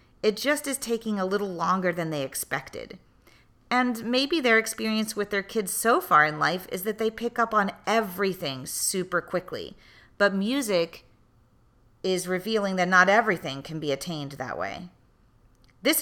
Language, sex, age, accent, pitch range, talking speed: English, female, 40-59, American, 165-220 Hz, 160 wpm